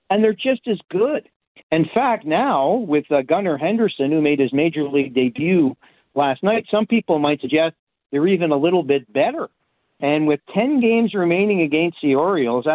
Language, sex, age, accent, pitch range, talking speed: English, male, 50-69, American, 135-175 Hz, 180 wpm